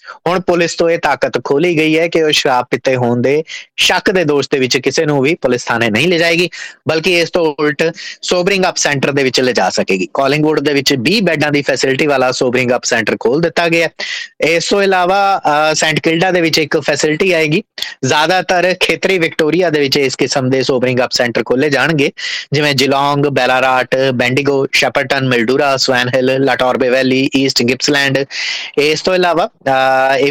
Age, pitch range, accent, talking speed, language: 20-39, 135-170 Hz, Indian, 110 wpm, English